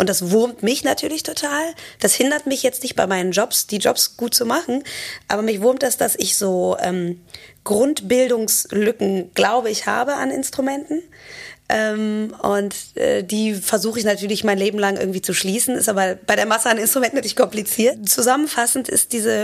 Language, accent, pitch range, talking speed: German, German, 200-255 Hz, 180 wpm